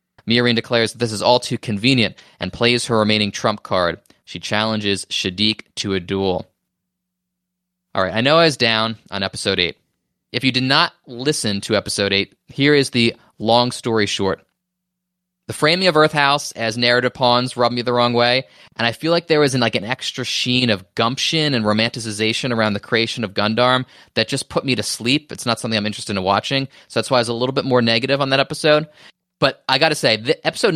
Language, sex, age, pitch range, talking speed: English, male, 20-39, 110-145 Hz, 215 wpm